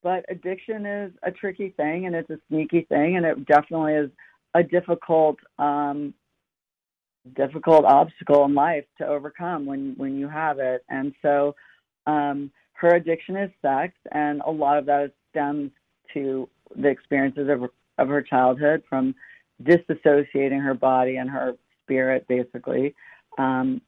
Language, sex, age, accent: English, female, 50-69, American